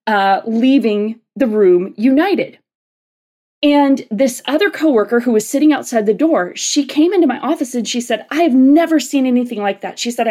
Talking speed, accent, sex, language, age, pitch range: 185 wpm, American, female, English, 20-39, 210-275 Hz